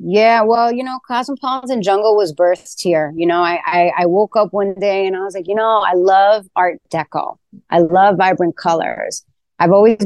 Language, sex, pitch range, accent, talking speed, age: English, female, 175-220 Hz, American, 210 wpm, 30-49